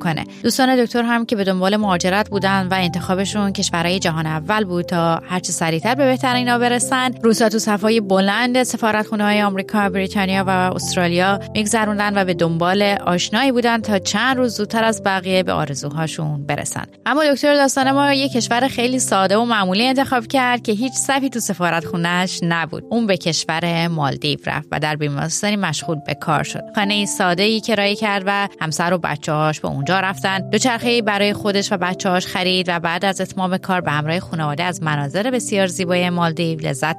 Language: Persian